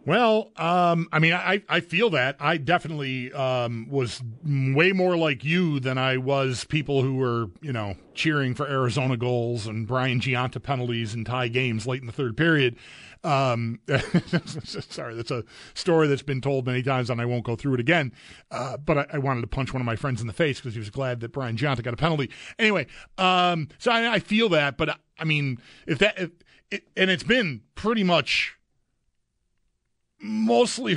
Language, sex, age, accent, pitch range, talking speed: English, male, 40-59, American, 130-170 Hz, 195 wpm